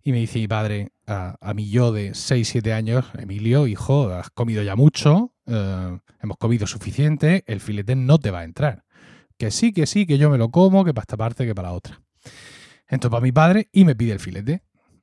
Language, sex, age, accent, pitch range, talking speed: Spanish, male, 30-49, Spanish, 110-145 Hz, 225 wpm